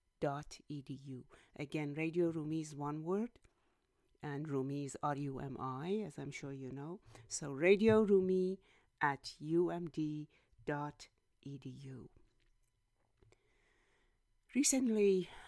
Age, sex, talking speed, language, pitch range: 60-79, female, 85 wpm, English, 130-165 Hz